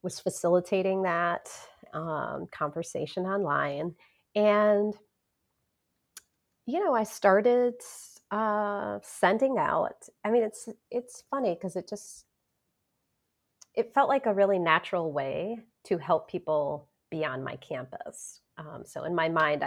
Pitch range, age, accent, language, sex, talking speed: 155-205 Hz, 30-49, American, English, female, 125 wpm